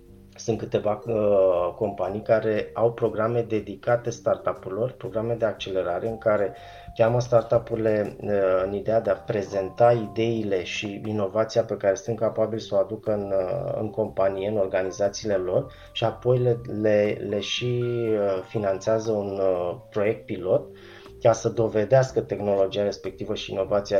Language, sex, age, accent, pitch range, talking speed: Romanian, male, 20-39, native, 100-115 Hz, 150 wpm